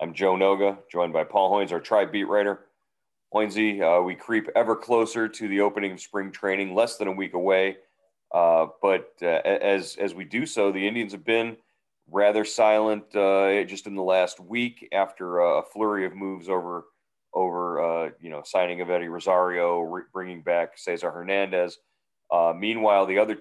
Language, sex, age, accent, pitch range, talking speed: English, male, 40-59, American, 90-100 Hz, 180 wpm